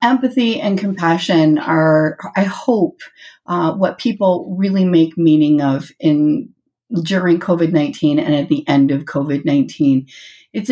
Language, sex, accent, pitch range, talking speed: English, female, American, 160-205 Hz, 130 wpm